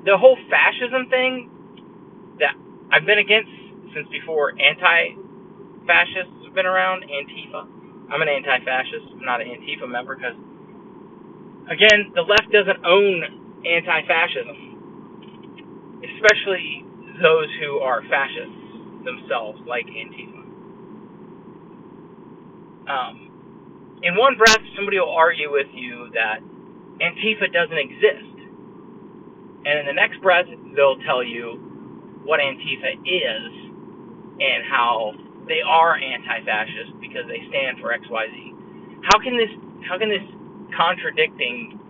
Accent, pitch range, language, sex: American, 175-270 Hz, English, male